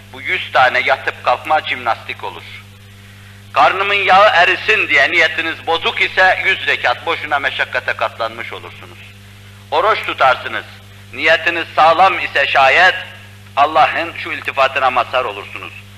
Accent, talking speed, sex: native, 115 wpm, male